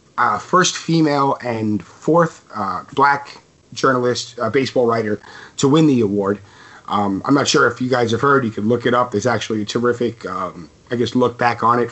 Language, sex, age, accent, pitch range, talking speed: English, male, 30-49, American, 110-135 Hz, 200 wpm